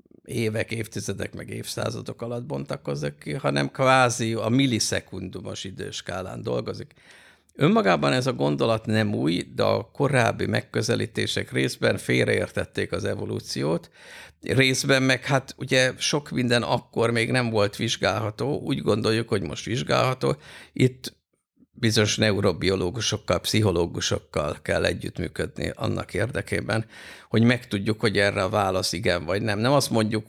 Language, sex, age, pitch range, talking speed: Hungarian, male, 50-69, 95-115 Hz, 125 wpm